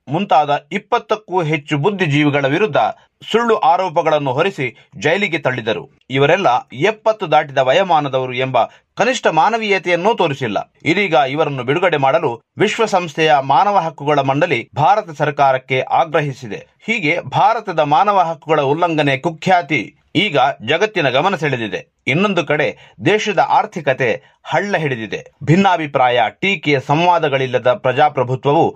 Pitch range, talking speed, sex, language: 135-175 Hz, 100 wpm, male, Kannada